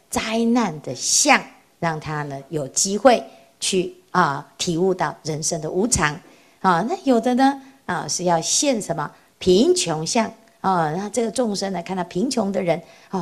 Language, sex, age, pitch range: Chinese, female, 50-69, 160-220 Hz